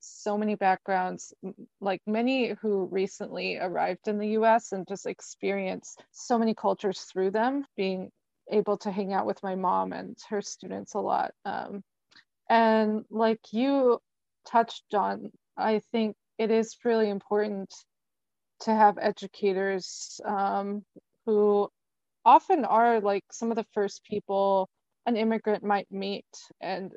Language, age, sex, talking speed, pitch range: English, 20-39, female, 140 wpm, 190-220 Hz